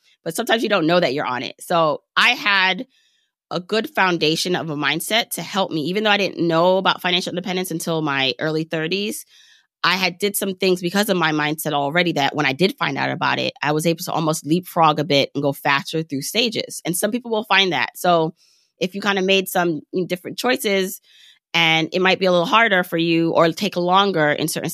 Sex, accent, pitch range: female, American, 150-185 Hz